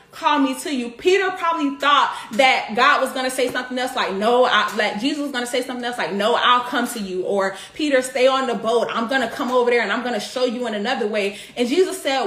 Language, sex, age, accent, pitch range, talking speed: English, female, 30-49, American, 250-320 Hz, 270 wpm